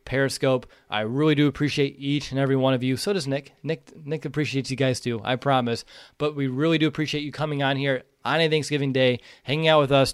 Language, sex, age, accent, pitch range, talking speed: English, male, 20-39, American, 125-150 Hz, 230 wpm